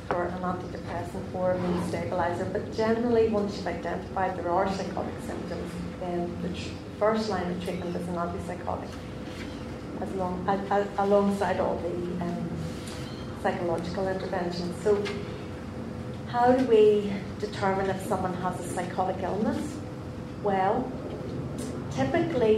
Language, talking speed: English, 115 wpm